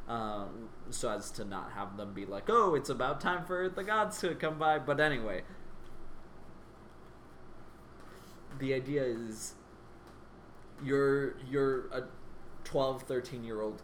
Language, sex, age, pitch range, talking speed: English, male, 20-39, 115-140 Hz, 125 wpm